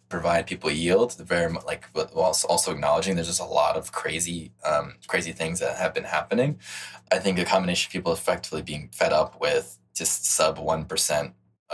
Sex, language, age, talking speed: male, English, 20-39, 185 wpm